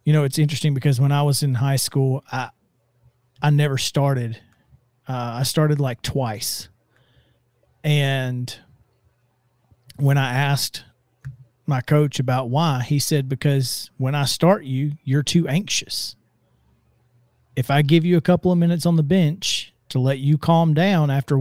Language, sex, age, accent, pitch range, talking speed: English, male, 40-59, American, 125-165 Hz, 155 wpm